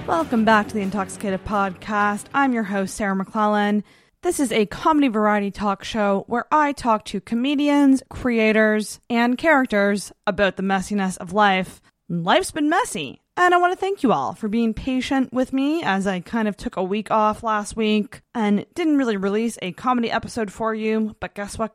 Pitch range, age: 195-240 Hz, 20-39